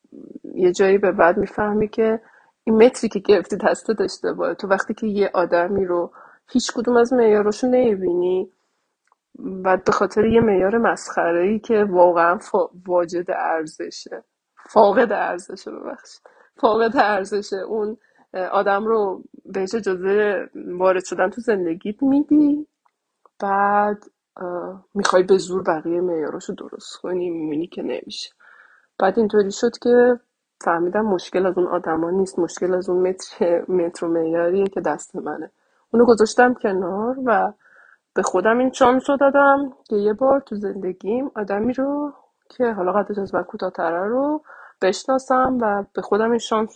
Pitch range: 185-245 Hz